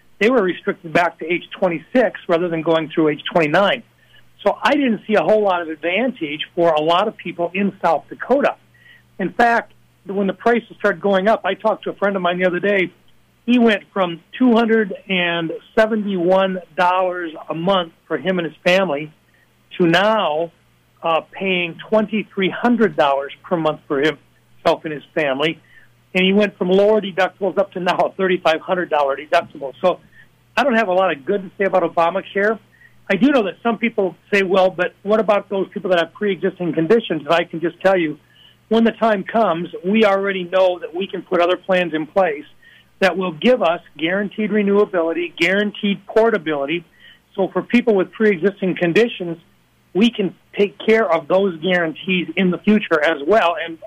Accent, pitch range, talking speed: American, 170-205 Hz, 180 wpm